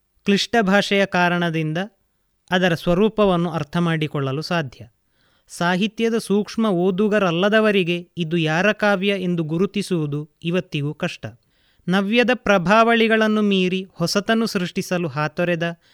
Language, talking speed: Kannada, 90 wpm